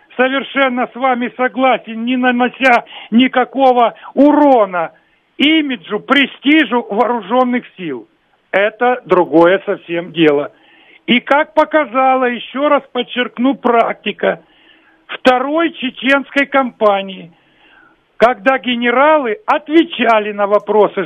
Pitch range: 210-265 Hz